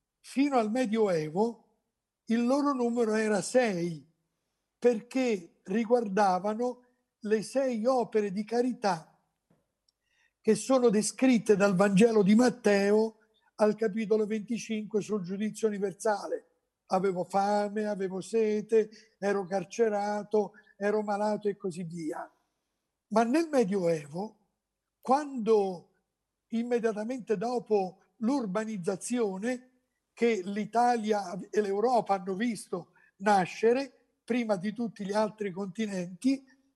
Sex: male